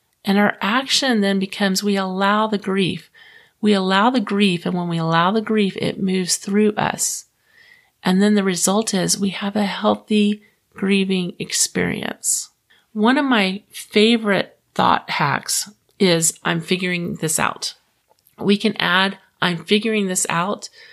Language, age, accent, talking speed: English, 40-59, American, 150 wpm